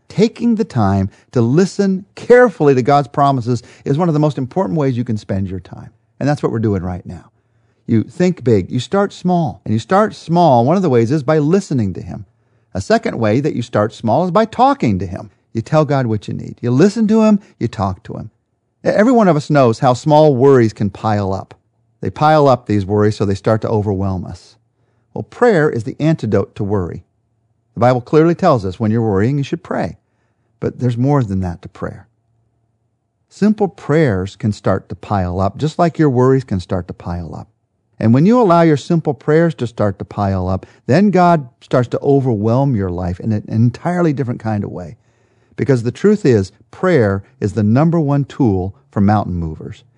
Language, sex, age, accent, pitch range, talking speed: English, male, 50-69, American, 110-150 Hz, 210 wpm